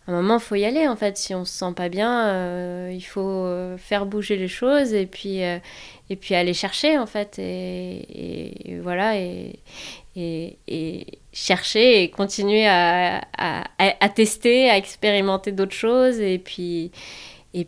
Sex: female